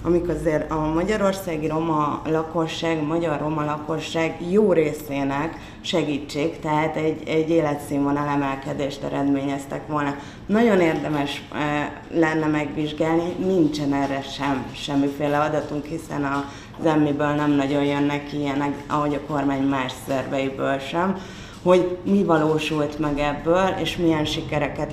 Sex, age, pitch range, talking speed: female, 30-49, 145-160 Hz, 120 wpm